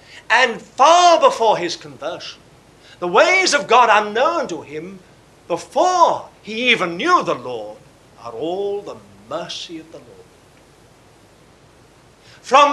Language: English